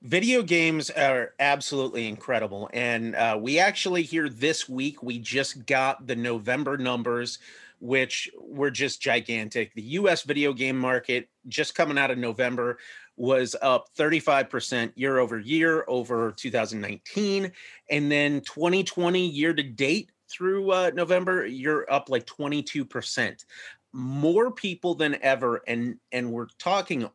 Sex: male